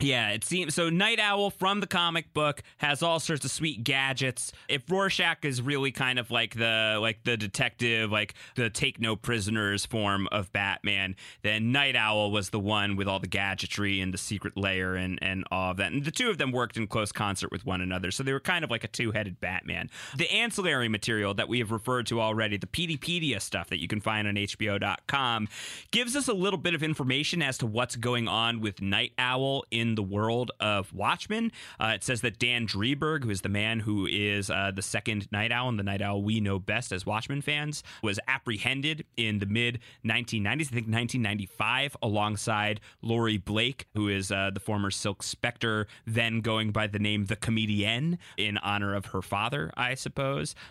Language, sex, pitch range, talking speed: English, male, 100-130 Hz, 205 wpm